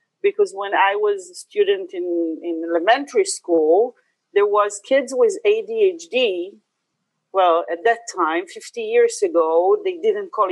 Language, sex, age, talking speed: English, female, 40-59, 145 wpm